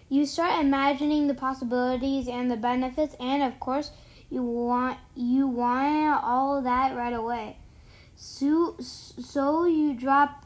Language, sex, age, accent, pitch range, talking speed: English, female, 10-29, American, 250-290 Hz, 130 wpm